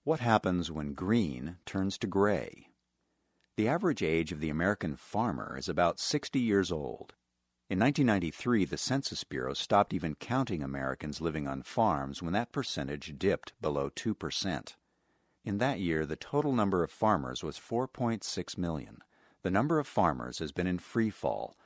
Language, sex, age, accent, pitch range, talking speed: English, male, 50-69, American, 80-110 Hz, 160 wpm